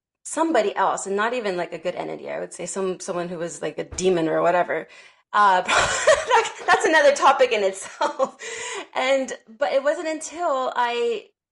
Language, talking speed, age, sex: English, 170 wpm, 30-49, female